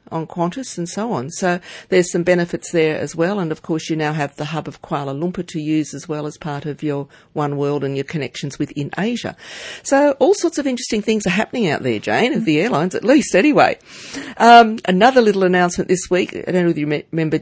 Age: 50-69